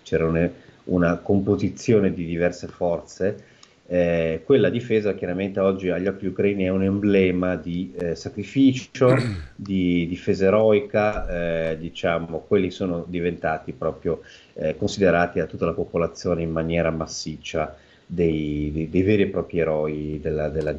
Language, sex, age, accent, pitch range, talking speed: Italian, male, 30-49, native, 85-100 Hz, 140 wpm